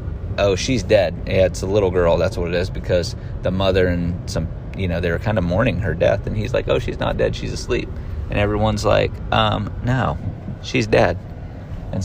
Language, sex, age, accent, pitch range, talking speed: English, male, 30-49, American, 90-105 Hz, 210 wpm